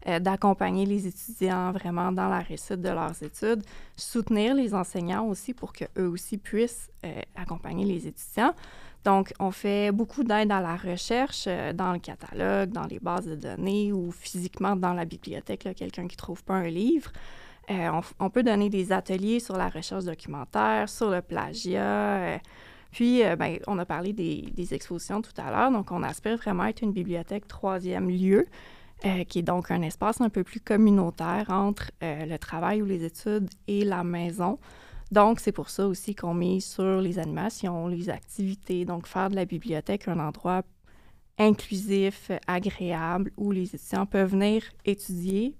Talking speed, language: 180 wpm, French